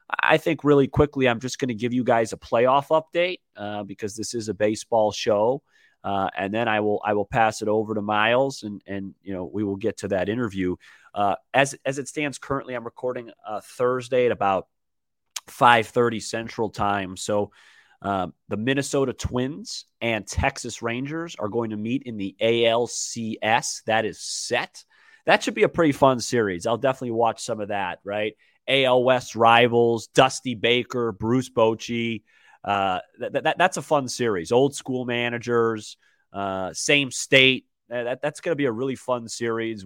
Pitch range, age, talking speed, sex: 105-125 Hz, 30-49, 180 wpm, male